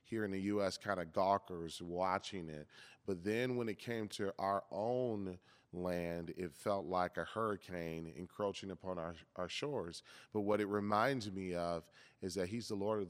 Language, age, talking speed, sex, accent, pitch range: English, 30-49, 185 wpm, male, American, 95-120 Hz